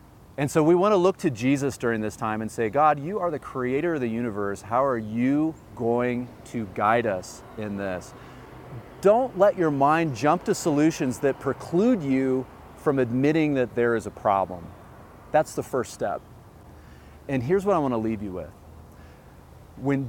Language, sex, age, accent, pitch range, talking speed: English, male, 30-49, American, 105-150 Hz, 180 wpm